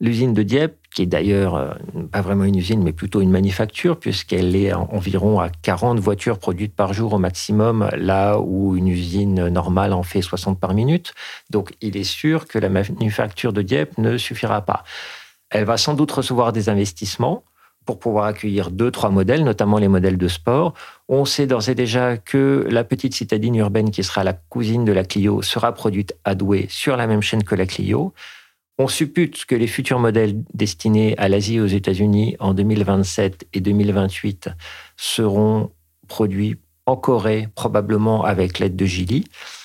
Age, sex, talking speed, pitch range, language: 50-69, male, 180 wpm, 100-120 Hz, French